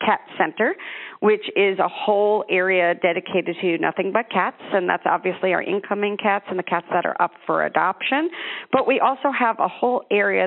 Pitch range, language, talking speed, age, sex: 180-215 Hz, English, 190 wpm, 50-69, female